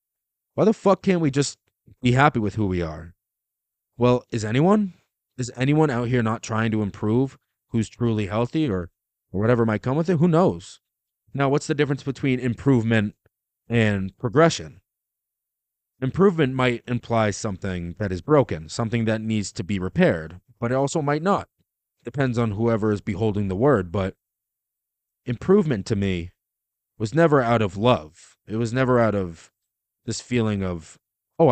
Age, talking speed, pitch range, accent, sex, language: 30-49, 165 wpm, 100-130 Hz, American, male, English